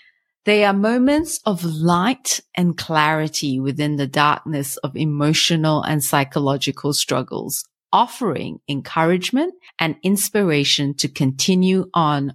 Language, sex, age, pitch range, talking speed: English, female, 40-59, 150-200 Hz, 105 wpm